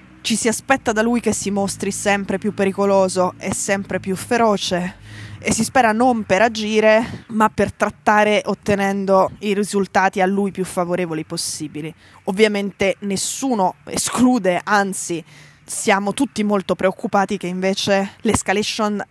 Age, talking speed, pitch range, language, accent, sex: 20-39, 135 wpm, 180-205 Hz, Italian, native, female